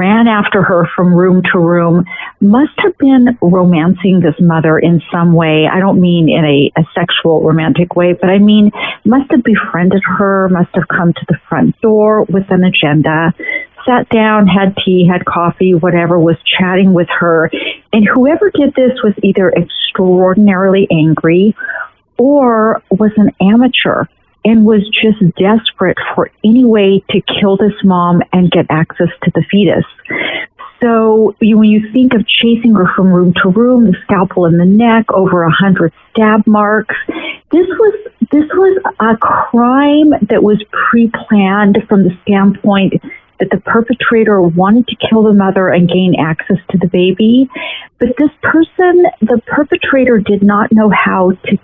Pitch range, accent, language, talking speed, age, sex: 180-230 Hz, American, English, 160 wpm, 50-69, female